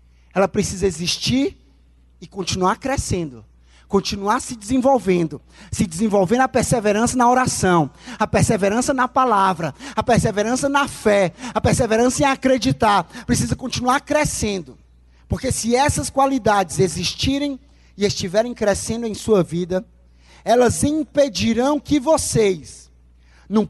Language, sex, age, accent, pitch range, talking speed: Portuguese, male, 20-39, Brazilian, 170-275 Hz, 115 wpm